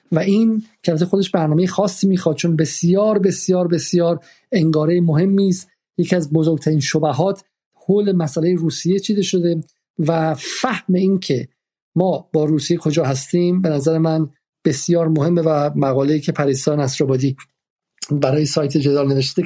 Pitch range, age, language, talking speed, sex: 150-180 Hz, 50-69, Persian, 140 wpm, male